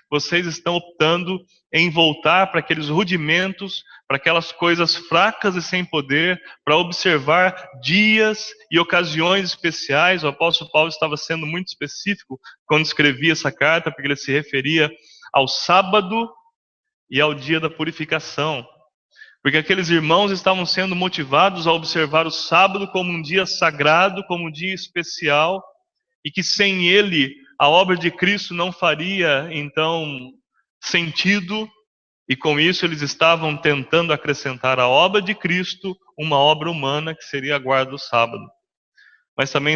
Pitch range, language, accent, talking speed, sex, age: 140-180 Hz, English, Brazilian, 145 wpm, male, 20-39